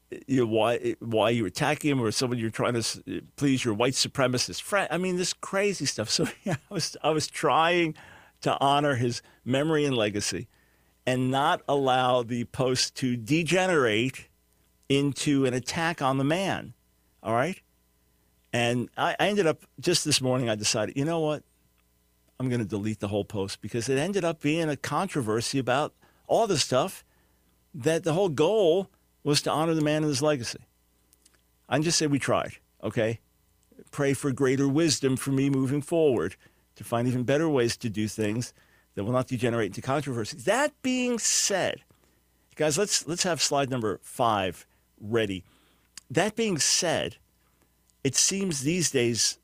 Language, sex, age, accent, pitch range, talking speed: English, male, 50-69, American, 105-150 Hz, 170 wpm